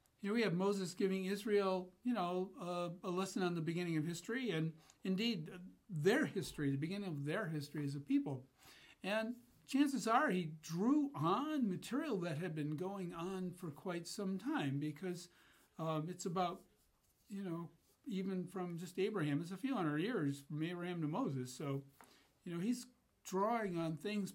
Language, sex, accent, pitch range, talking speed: English, male, American, 150-195 Hz, 170 wpm